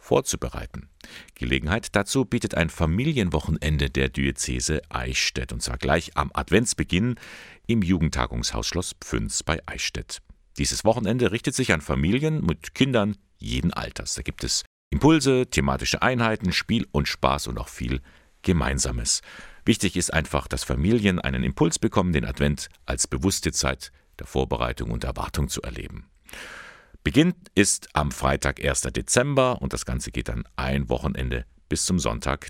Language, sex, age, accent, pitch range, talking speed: German, male, 50-69, German, 65-95 Hz, 145 wpm